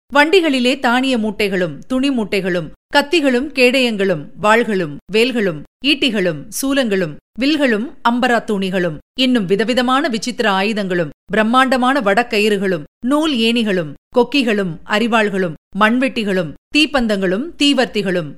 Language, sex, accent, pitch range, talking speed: Tamil, female, native, 195-270 Hz, 90 wpm